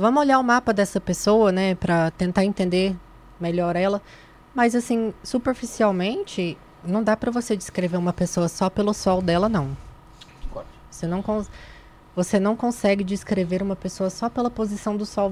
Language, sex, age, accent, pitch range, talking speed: Portuguese, female, 20-39, Brazilian, 180-220 Hz, 160 wpm